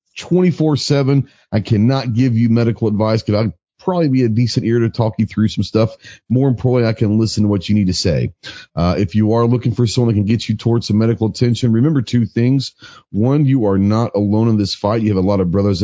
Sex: male